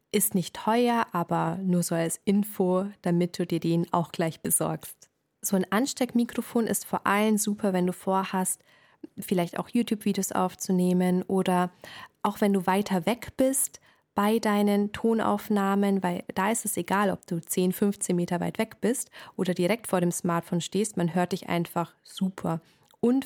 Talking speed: 165 wpm